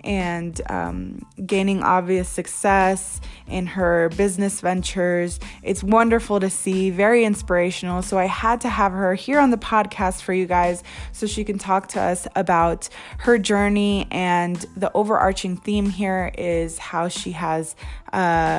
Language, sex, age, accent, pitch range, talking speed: English, female, 20-39, American, 175-205 Hz, 150 wpm